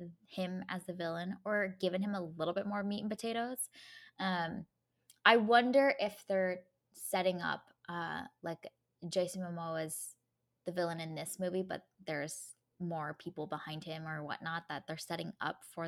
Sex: female